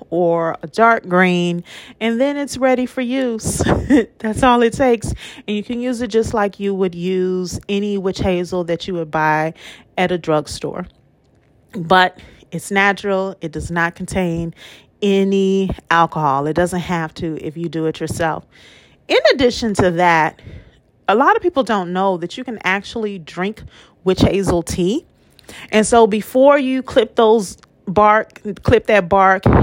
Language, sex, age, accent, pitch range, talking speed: English, female, 30-49, American, 170-220 Hz, 160 wpm